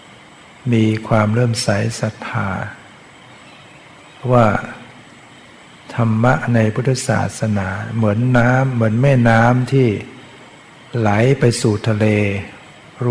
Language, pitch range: Thai, 110-130 Hz